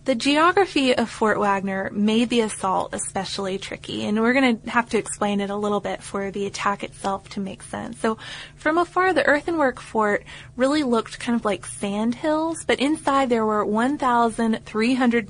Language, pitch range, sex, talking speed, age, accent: English, 200-245 Hz, female, 180 wpm, 20-39, American